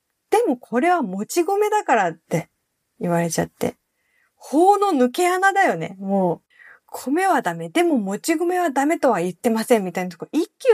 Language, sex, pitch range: Japanese, female, 185-260 Hz